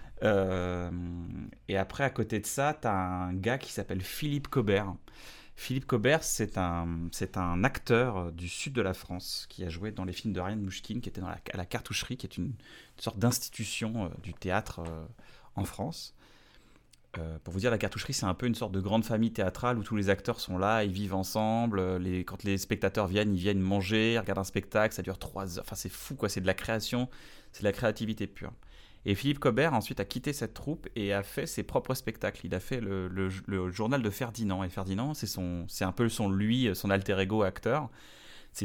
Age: 30-49